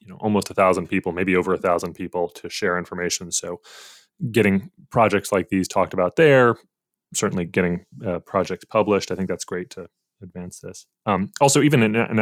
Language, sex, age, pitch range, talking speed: English, male, 20-39, 95-110 Hz, 190 wpm